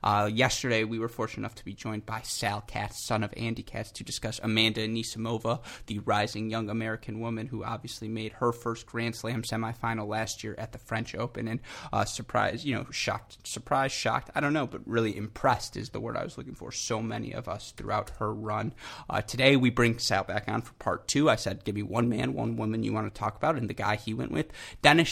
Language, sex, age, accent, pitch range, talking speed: English, male, 20-39, American, 105-120 Hz, 230 wpm